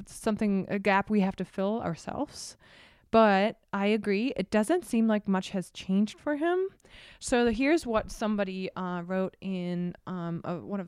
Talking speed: 170 wpm